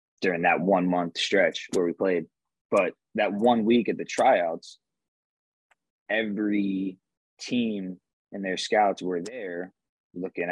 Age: 20-39